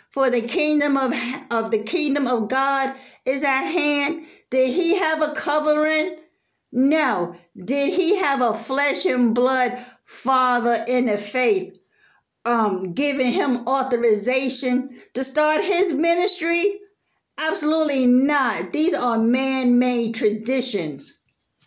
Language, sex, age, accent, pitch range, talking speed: English, female, 60-79, American, 235-290 Hz, 120 wpm